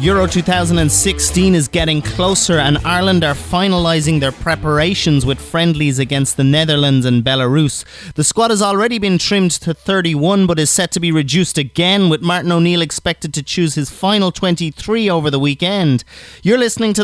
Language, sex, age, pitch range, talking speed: English, male, 30-49, 140-185 Hz, 170 wpm